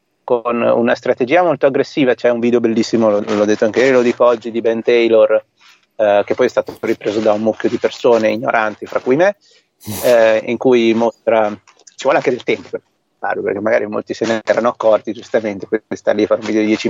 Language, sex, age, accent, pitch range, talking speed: Italian, male, 30-49, native, 110-125 Hz, 220 wpm